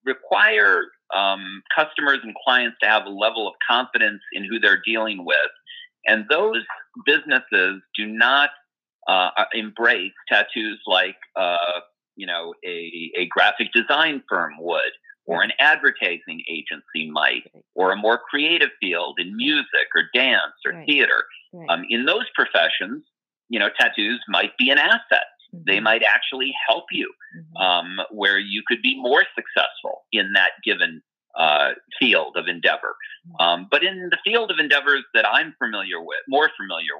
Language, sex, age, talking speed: English, male, 40-59, 150 wpm